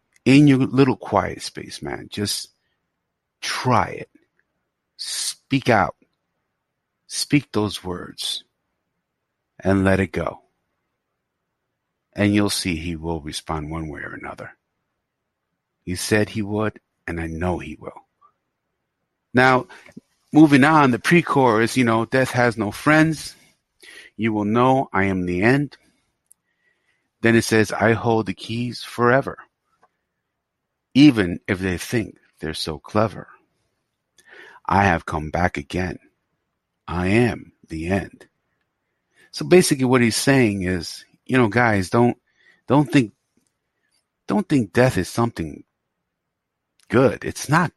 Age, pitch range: 50-69, 95-125 Hz